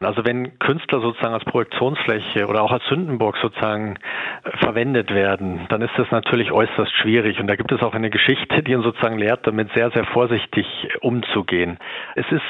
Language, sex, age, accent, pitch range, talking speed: German, male, 50-69, German, 115-125 Hz, 180 wpm